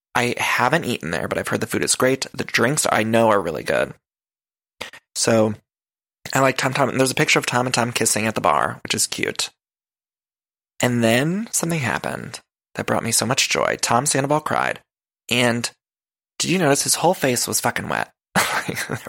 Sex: male